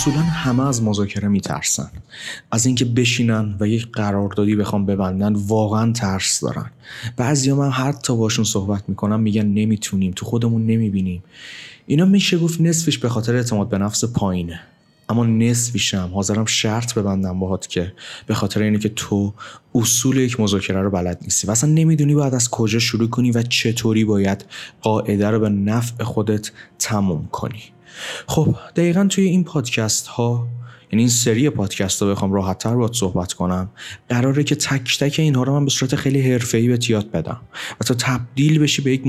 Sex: male